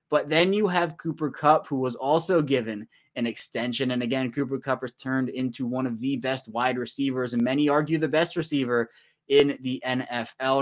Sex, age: male, 20-39